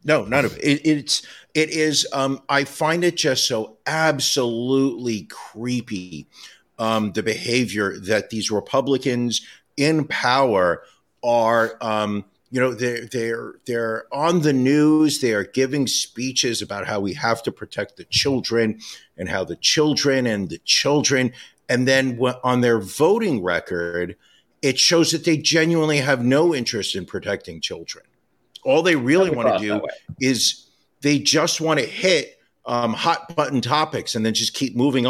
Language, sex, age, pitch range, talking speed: English, male, 50-69, 110-145 Hz, 155 wpm